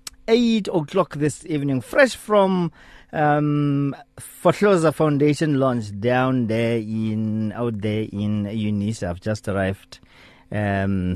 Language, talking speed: English, 115 wpm